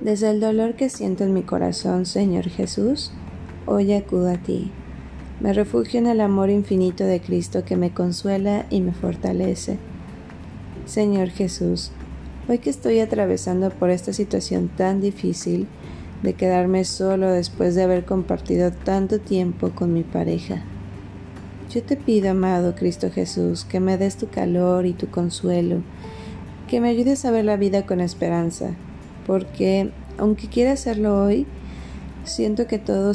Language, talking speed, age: Spanish, 150 wpm, 20-39